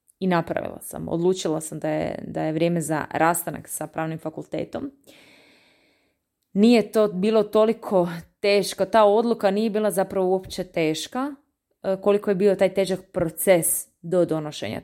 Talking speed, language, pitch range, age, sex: 140 wpm, Croatian, 160-190 Hz, 20-39, female